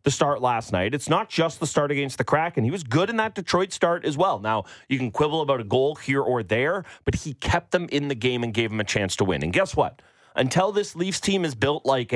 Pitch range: 125-175 Hz